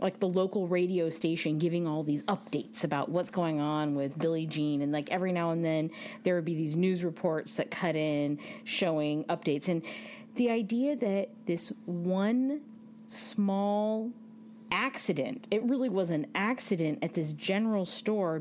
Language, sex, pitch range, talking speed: English, female, 165-225 Hz, 165 wpm